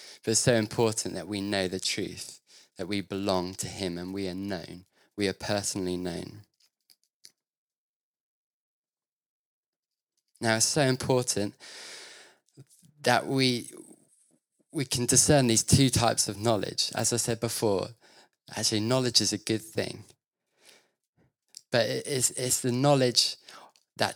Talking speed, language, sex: 130 wpm, English, male